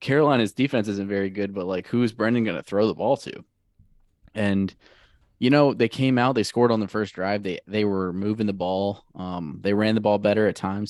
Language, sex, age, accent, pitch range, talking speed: English, male, 20-39, American, 95-105 Hz, 220 wpm